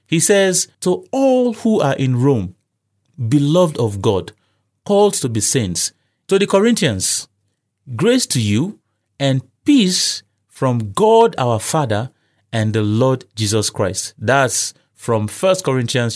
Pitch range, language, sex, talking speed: 105-160 Hz, English, male, 135 wpm